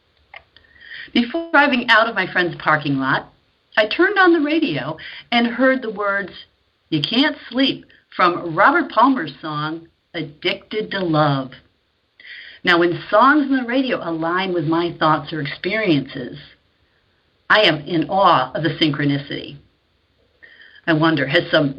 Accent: American